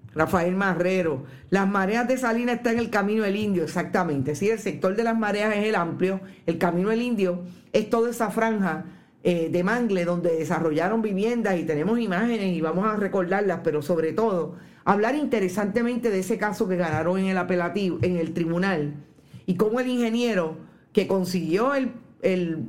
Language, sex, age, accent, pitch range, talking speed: Spanish, female, 50-69, American, 170-225 Hz, 180 wpm